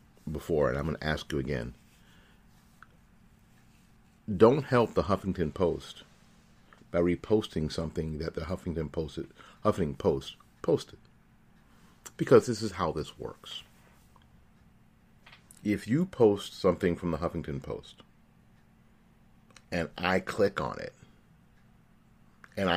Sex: male